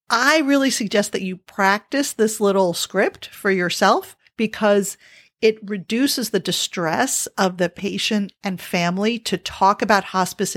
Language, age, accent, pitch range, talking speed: English, 40-59, American, 185-230 Hz, 140 wpm